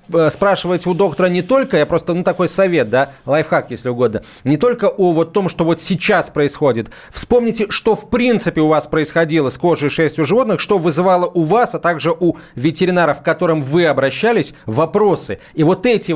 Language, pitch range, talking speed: Russian, 135-180 Hz, 190 wpm